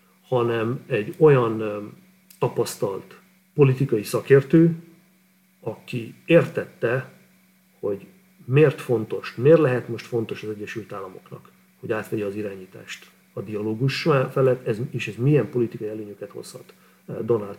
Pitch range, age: 120-170 Hz, 40-59